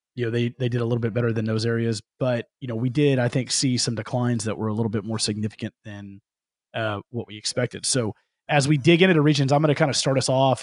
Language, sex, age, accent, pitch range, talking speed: English, male, 30-49, American, 115-140 Hz, 275 wpm